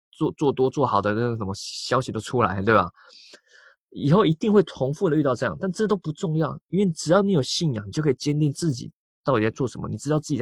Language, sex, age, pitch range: Chinese, male, 20-39, 115-160 Hz